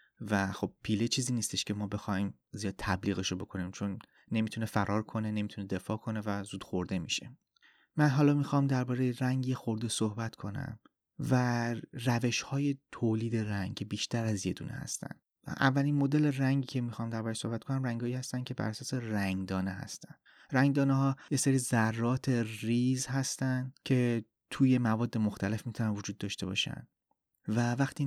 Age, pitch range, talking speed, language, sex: 30-49, 105-130 Hz, 155 wpm, Persian, male